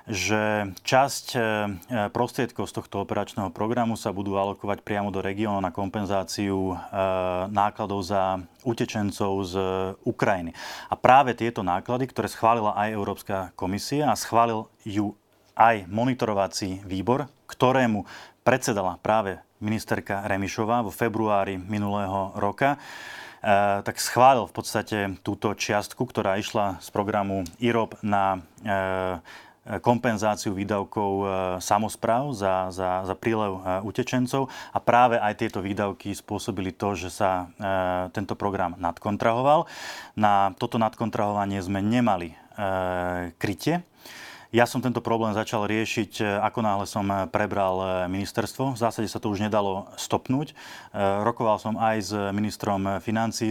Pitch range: 95-115 Hz